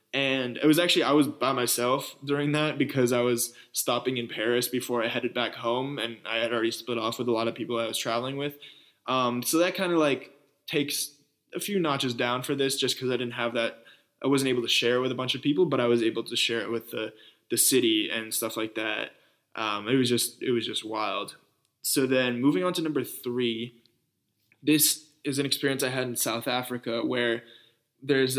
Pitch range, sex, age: 120-145 Hz, male, 20-39